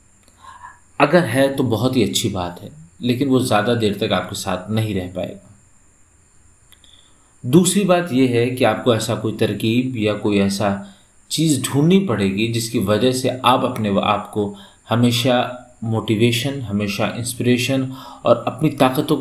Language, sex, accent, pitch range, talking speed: Hindi, male, native, 100-130 Hz, 145 wpm